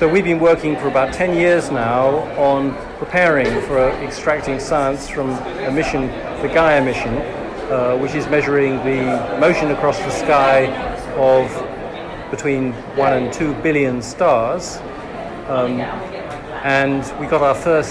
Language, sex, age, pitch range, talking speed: English, male, 40-59, 130-150 Hz, 140 wpm